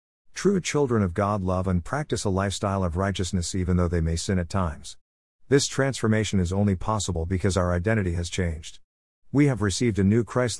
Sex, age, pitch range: male, 50-69, 85-115 Hz